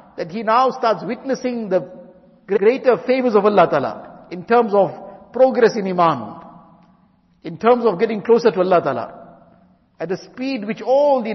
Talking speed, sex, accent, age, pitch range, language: 165 wpm, male, Indian, 50-69, 185-245 Hz, English